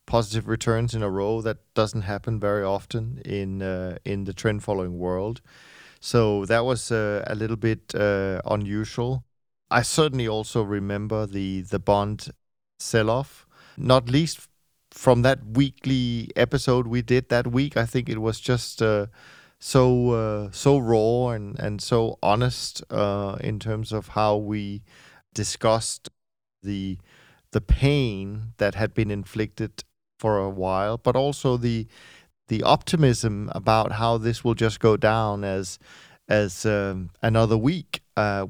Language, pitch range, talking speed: English, 100-120 Hz, 145 wpm